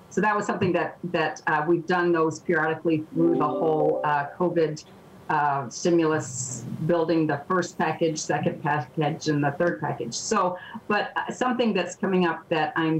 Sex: female